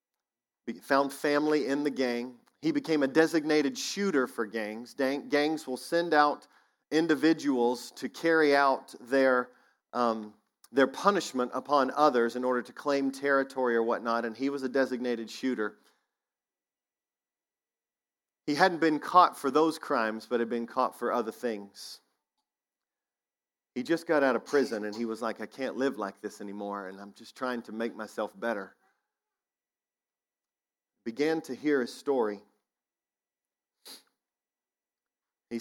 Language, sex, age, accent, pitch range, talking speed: English, male, 40-59, American, 115-140 Hz, 140 wpm